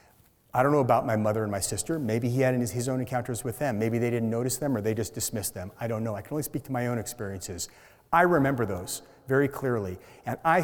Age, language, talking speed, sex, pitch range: 40-59, English, 255 wpm, male, 115-145 Hz